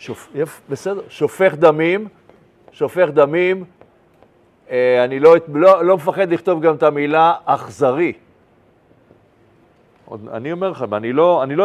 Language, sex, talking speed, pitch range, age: Hebrew, male, 115 wpm, 140-195 Hz, 50-69